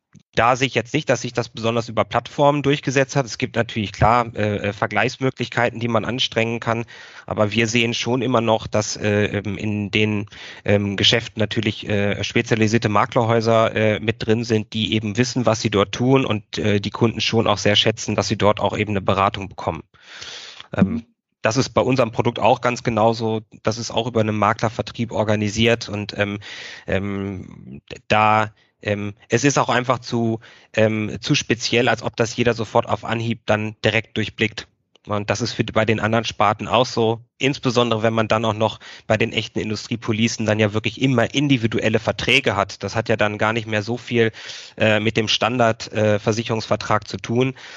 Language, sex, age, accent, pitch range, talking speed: German, male, 30-49, German, 105-115 Hz, 175 wpm